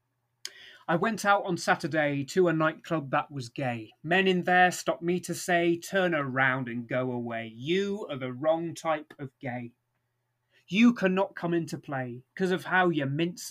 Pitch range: 135-180 Hz